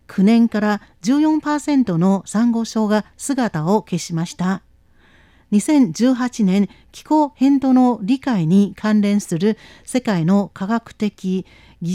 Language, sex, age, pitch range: Chinese, female, 50-69, 190-260 Hz